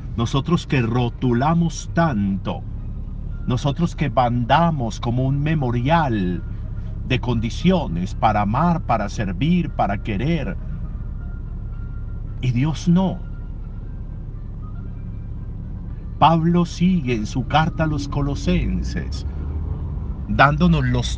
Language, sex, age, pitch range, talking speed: Spanish, male, 50-69, 100-145 Hz, 90 wpm